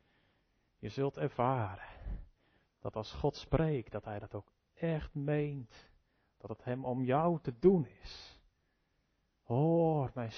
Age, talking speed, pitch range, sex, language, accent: 40-59, 135 wpm, 110-165 Hz, male, Dutch, Dutch